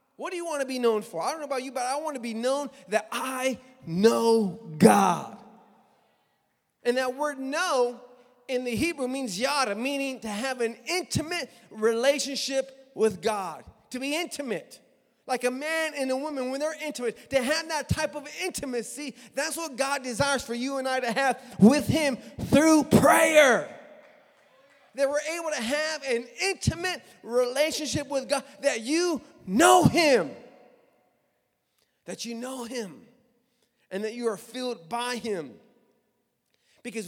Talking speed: 160 wpm